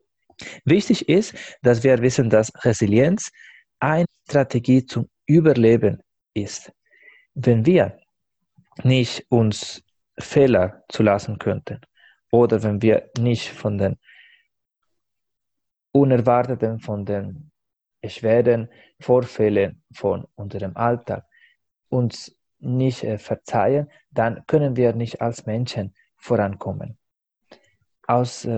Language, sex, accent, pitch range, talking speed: German, male, German, 110-135 Hz, 90 wpm